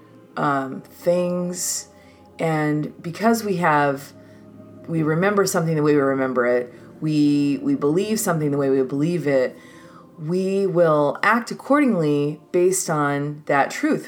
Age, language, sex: 30-49, English, female